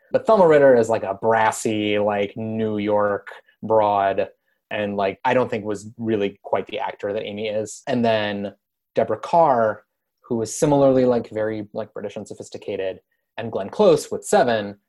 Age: 20-39